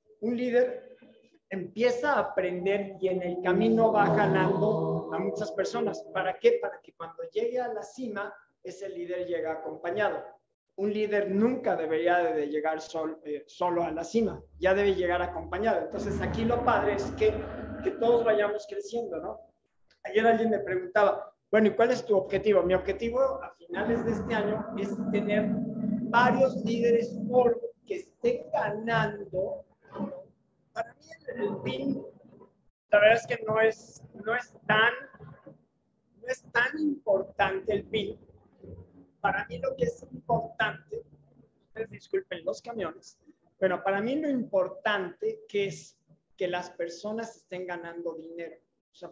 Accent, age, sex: Mexican, 50-69, male